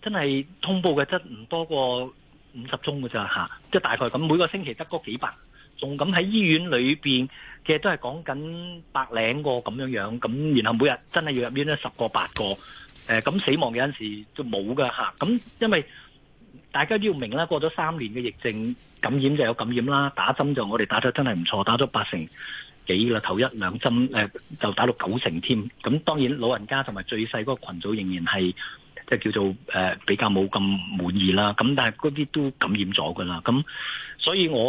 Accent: native